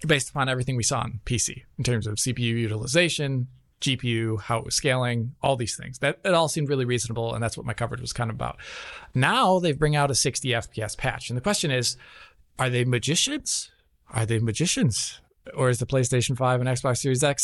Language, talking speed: English, 215 wpm